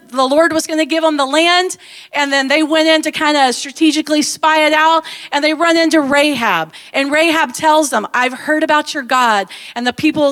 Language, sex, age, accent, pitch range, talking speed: English, female, 40-59, American, 220-300 Hz, 220 wpm